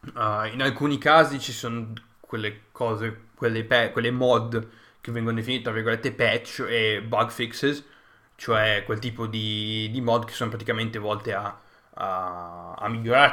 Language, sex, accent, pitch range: Italian, male, native, 110-125 Hz